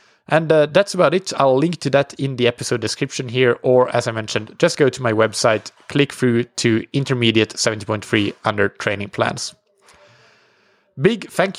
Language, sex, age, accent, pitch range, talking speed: English, male, 20-39, Norwegian, 115-140 Hz, 170 wpm